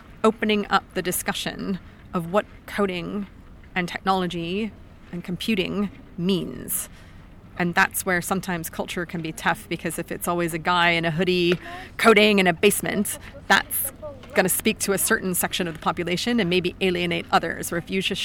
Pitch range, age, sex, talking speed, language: 180-215 Hz, 30-49, female, 170 wpm, Danish